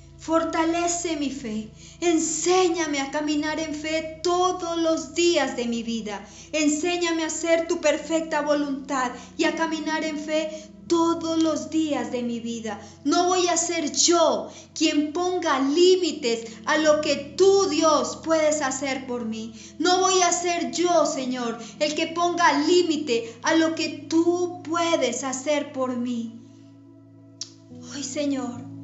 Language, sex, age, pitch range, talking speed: Spanish, female, 40-59, 270-335 Hz, 140 wpm